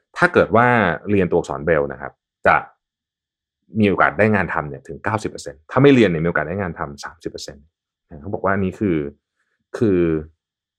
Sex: male